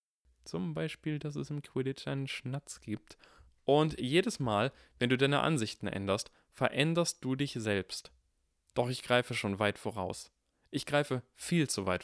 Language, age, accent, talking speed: German, 20-39, German, 160 wpm